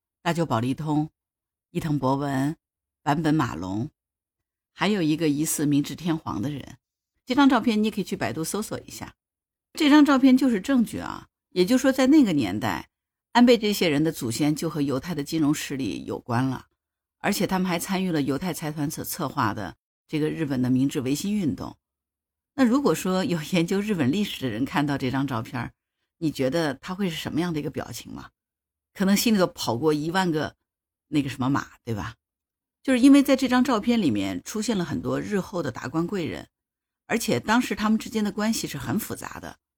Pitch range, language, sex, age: 135-210 Hz, Chinese, female, 50-69